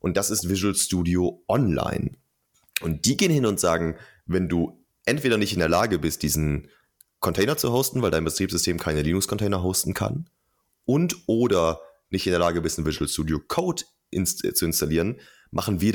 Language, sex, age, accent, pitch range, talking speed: German, male, 30-49, German, 85-110 Hz, 175 wpm